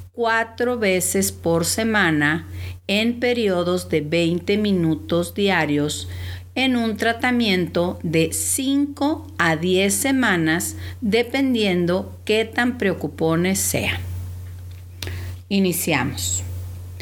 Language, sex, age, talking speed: English, female, 50-69, 85 wpm